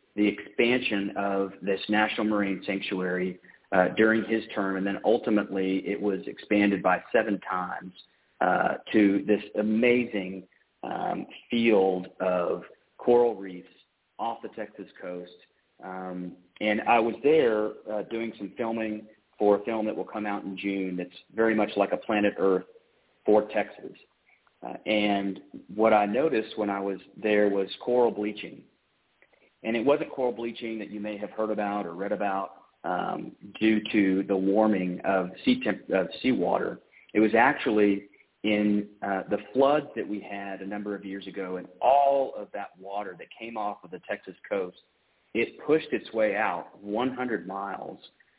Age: 40-59